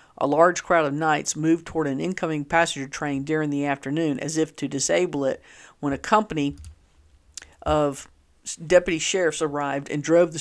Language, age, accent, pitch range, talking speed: English, 50-69, American, 140-170 Hz, 165 wpm